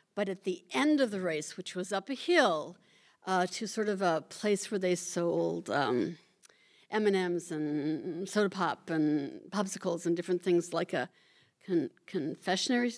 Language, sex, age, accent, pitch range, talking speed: English, female, 60-79, American, 175-225 Hz, 155 wpm